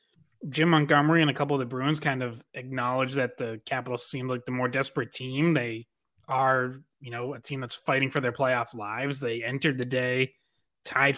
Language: English